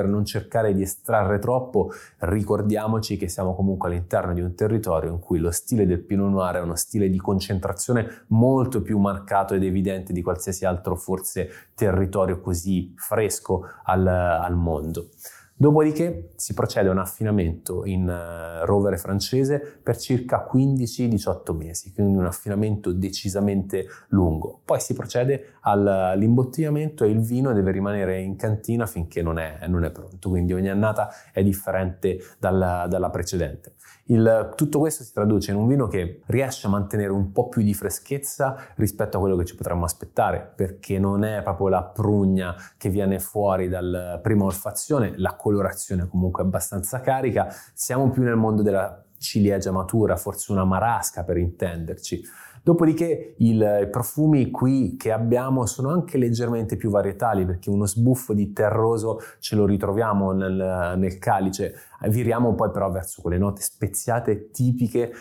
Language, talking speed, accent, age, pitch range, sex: Italian, 155 wpm, native, 20-39, 95-115 Hz, male